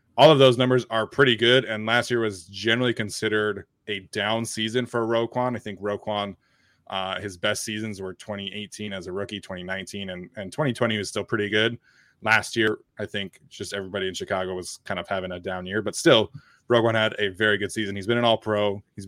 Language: English